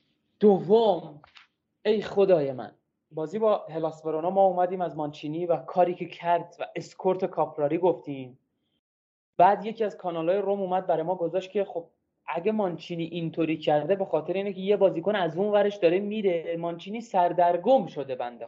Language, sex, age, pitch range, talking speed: Persian, male, 20-39, 150-205 Hz, 155 wpm